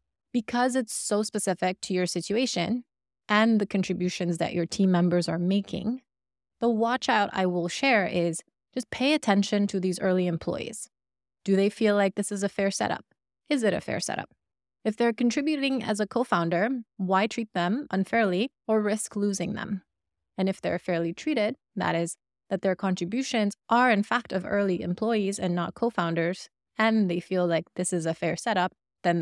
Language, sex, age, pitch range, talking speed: English, female, 20-39, 175-225 Hz, 180 wpm